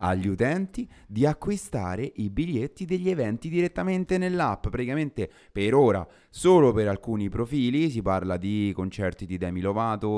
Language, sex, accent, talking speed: Italian, male, native, 140 wpm